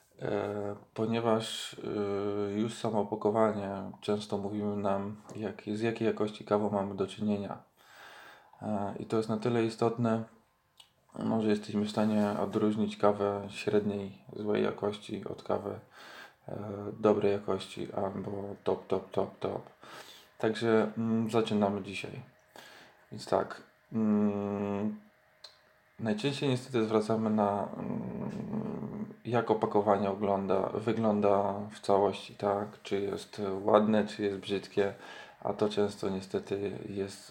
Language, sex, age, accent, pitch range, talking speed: Polish, male, 20-39, native, 100-110 Hz, 120 wpm